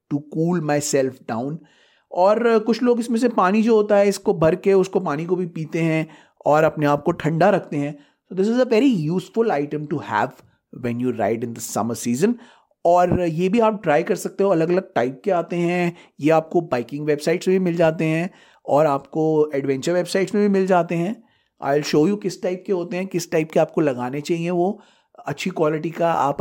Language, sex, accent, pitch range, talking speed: Hindi, male, native, 145-185 Hz, 225 wpm